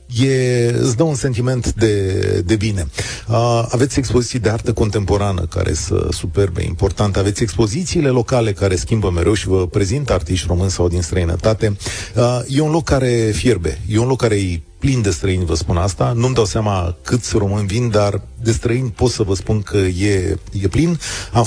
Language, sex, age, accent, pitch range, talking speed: Romanian, male, 40-59, native, 95-125 Hz, 185 wpm